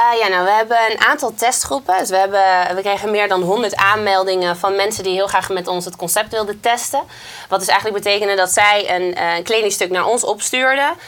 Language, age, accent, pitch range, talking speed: Dutch, 20-39, Dutch, 180-210 Hz, 225 wpm